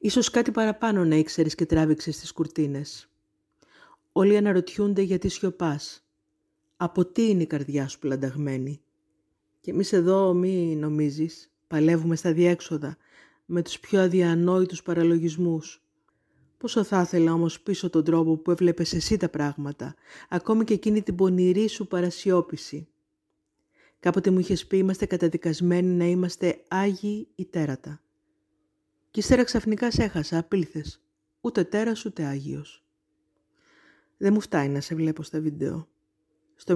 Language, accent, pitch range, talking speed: Greek, native, 155-185 Hz, 130 wpm